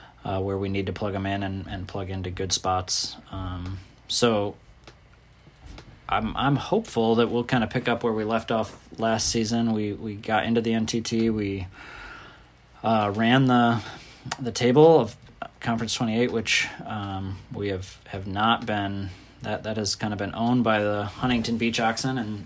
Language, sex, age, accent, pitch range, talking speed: English, male, 20-39, American, 100-115 Hz, 180 wpm